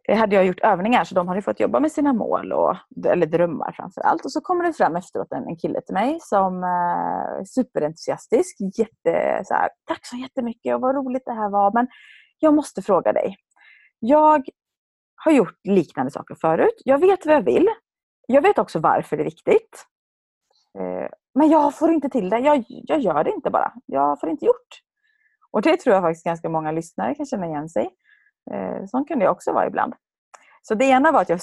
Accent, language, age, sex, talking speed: native, Swedish, 30-49, female, 205 wpm